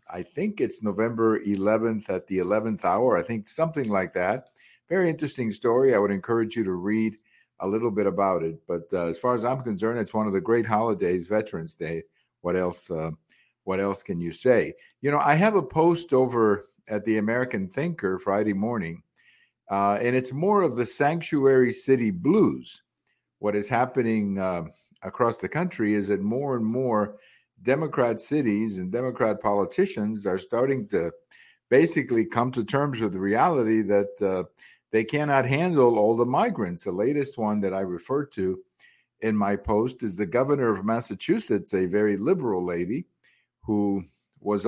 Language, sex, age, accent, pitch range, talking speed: English, male, 50-69, American, 105-140 Hz, 175 wpm